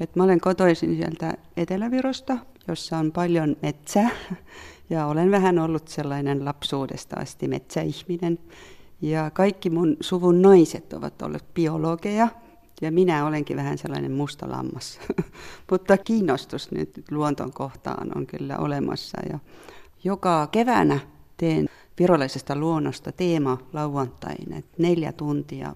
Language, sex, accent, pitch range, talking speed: Finnish, female, native, 150-195 Hz, 115 wpm